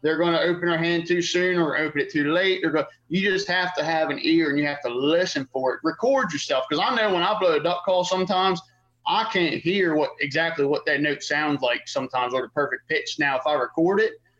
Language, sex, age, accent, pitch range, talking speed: English, male, 30-49, American, 145-180 Hz, 250 wpm